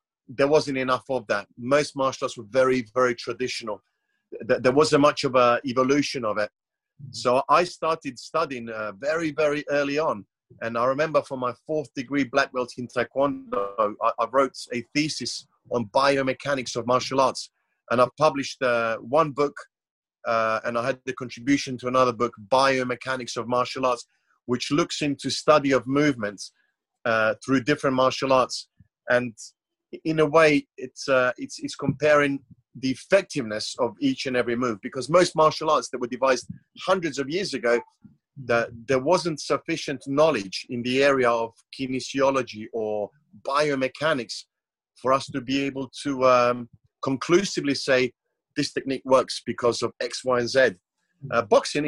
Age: 30-49